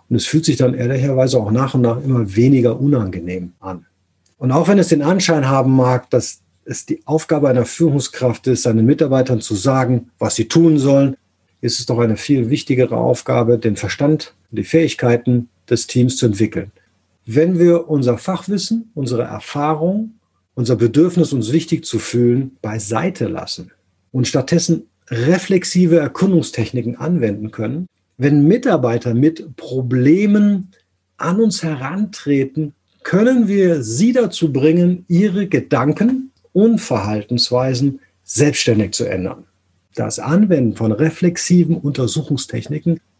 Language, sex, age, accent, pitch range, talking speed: German, male, 50-69, German, 120-165 Hz, 135 wpm